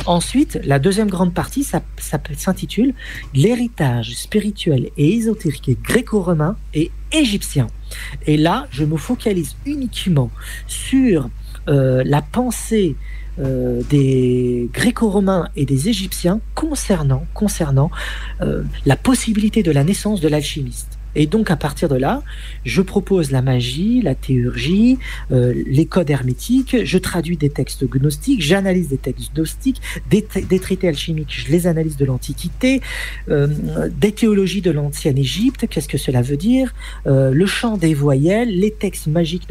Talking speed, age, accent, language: 140 wpm, 40-59, French, French